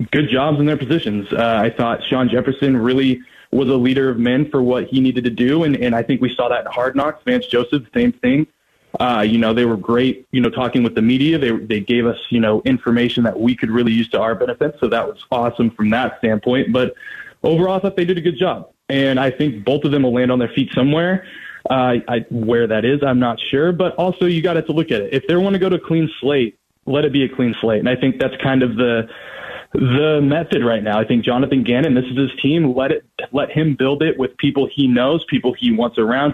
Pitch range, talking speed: 120-145 Hz, 255 wpm